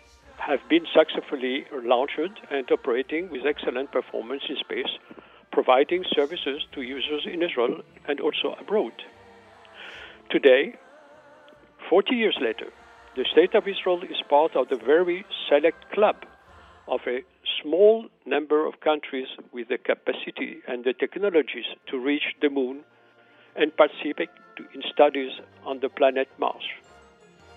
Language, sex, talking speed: French, male, 130 wpm